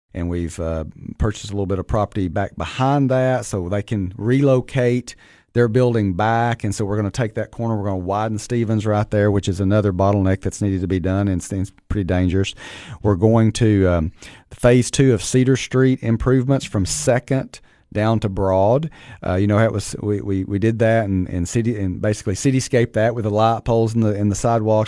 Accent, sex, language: American, male, English